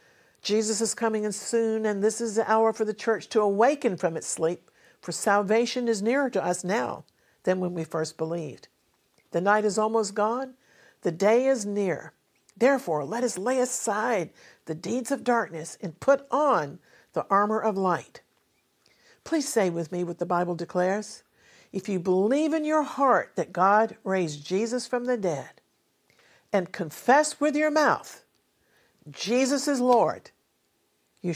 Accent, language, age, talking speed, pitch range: American, English, 50-69, 165 wpm, 175-235 Hz